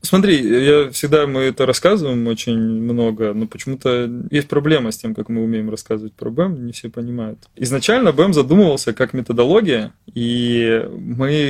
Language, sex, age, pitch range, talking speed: Russian, male, 20-39, 110-130 Hz, 155 wpm